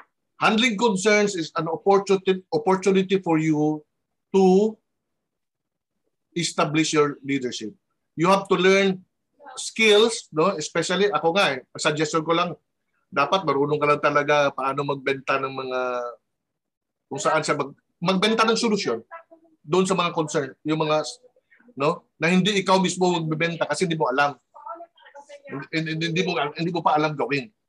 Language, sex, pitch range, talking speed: Filipino, male, 150-215 Hz, 140 wpm